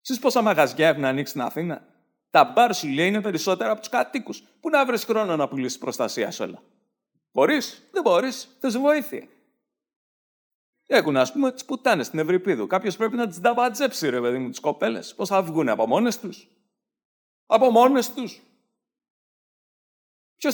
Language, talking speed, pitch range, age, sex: Greek, 160 wpm, 195-275 Hz, 50-69, male